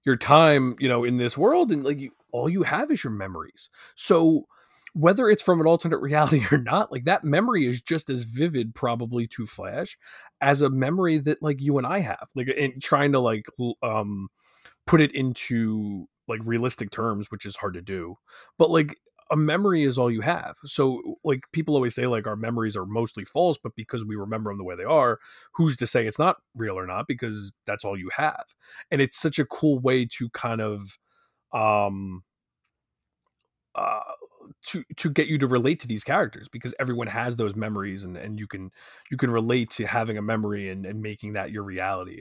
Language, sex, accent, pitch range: English, male, American, 100-140 Hz